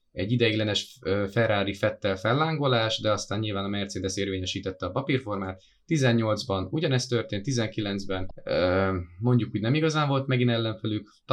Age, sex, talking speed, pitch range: 20-39, male, 125 wpm, 100-120 Hz